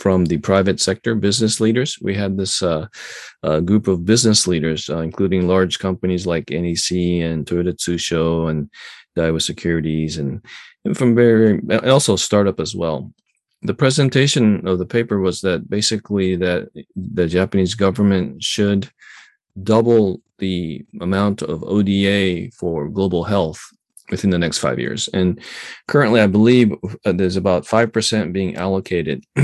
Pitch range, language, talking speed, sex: 85-105 Hz, English, 145 wpm, male